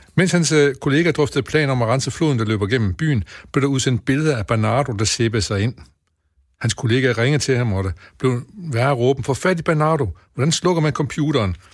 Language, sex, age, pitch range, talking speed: Danish, male, 60-79, 105-140 Hz, 205 wpm